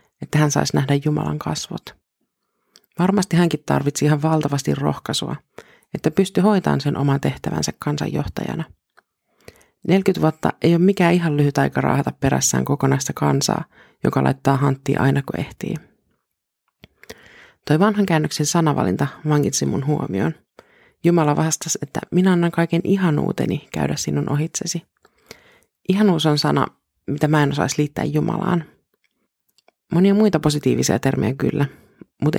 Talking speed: 130 wpm